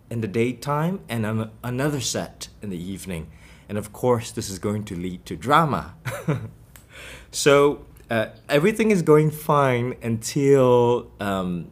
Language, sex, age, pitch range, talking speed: English, male, 20-39, 95-115 Hz, 145 wpm